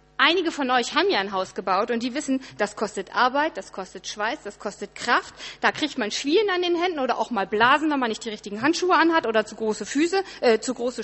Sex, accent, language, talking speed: female, German, German, 235 wpm